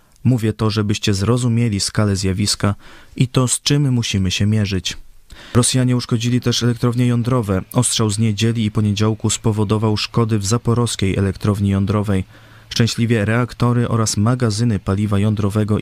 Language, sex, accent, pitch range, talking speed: Polish, male, native, 100-120 Hz, 135 wpm